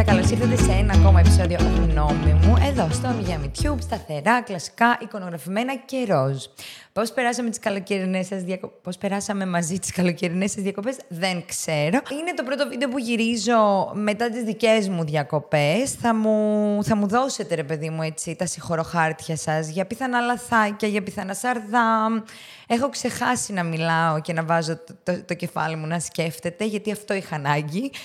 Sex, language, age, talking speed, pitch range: female, Greek, 20-39, 170 wpm, 165-235 Hz